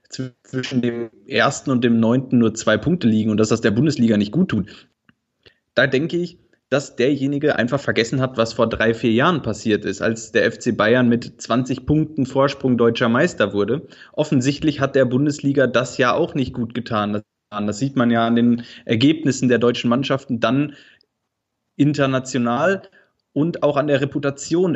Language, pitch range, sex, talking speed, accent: German, 115-140 Hz, male, 170 wpm, German